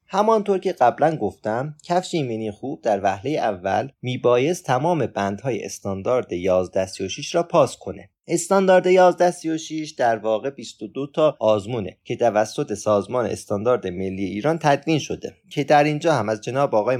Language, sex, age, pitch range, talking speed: Persian, male, 30-49, 110-160 Hz, 140 wpm